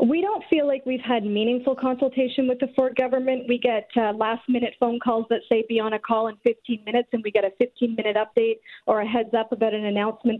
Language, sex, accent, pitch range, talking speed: English, female, American, 215-245 Hz, 225 wpm